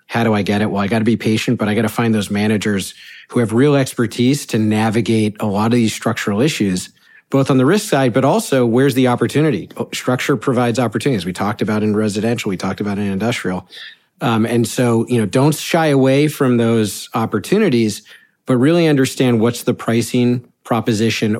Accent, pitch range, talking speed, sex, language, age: American, 110-130 Hz, 200 wpm, male, English, 40-59